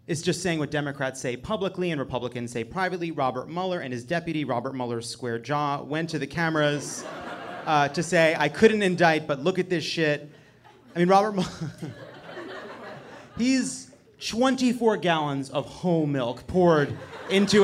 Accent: American